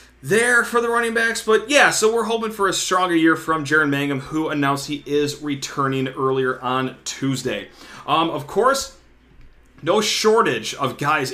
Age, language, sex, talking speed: 30-49, English, male, 170 wpm